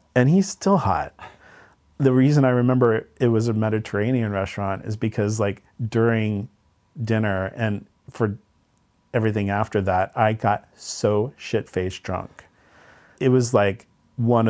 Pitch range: 100-120 Hz